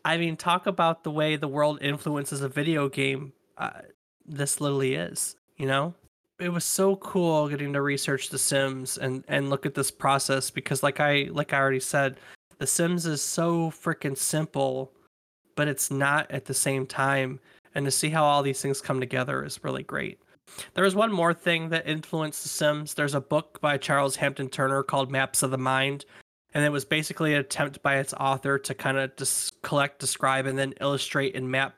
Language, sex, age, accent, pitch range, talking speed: English, male, 20-39, American, 135-150 Hz, 200 wpm